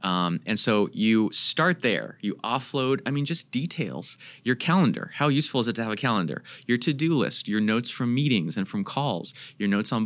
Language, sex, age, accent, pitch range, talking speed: English, male, 30-49, American, 105-145 Hz, 215 wpm